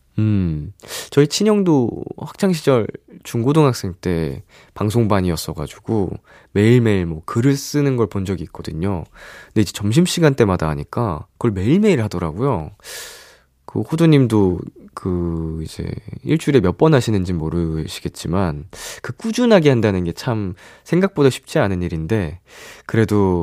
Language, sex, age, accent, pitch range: Korean, male, 20-39, native, 90-145 Hz